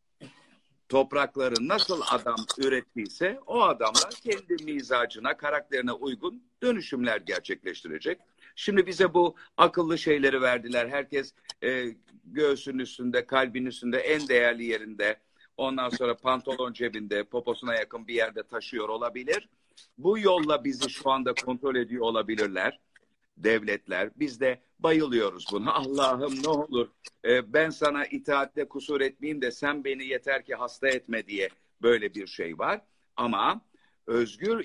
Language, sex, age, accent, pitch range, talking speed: Turkish, male, 50-69, native, 115-150 Hz, 125 wpm